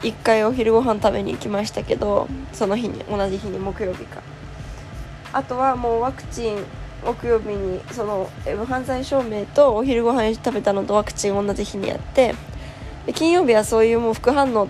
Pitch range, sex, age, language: 205-265 Hz, female, 20-39, Japanese